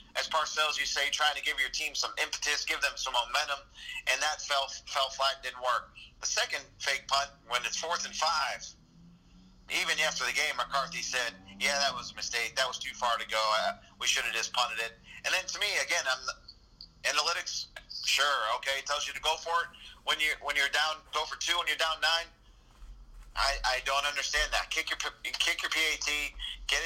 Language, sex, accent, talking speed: English, male, American, 205 wpm